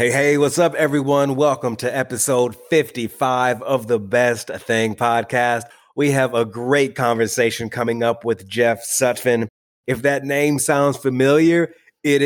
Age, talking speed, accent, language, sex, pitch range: 30-49, 145 wpm, American, English, male, 120-140 Hz